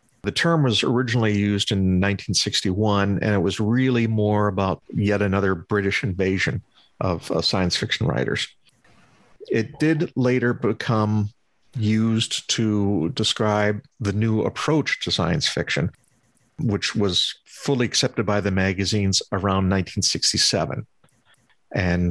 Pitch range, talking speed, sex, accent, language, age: 100-120 Hz, 120 wpm, male, American, English, 50-69